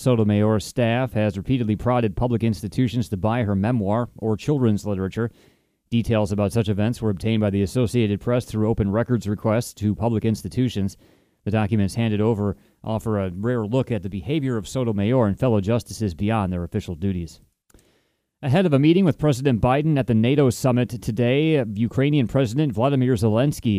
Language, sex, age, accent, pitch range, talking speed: English, male, 30-49, American, 115-180 Hz, 170 wpm